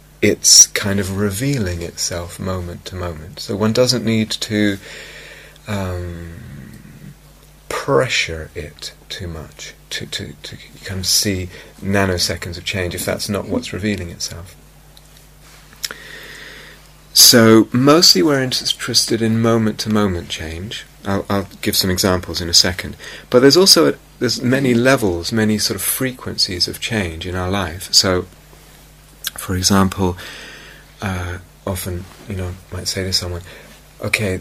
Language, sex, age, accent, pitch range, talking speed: English, male, 30-49, British, 85-110 Hz, 135 wpm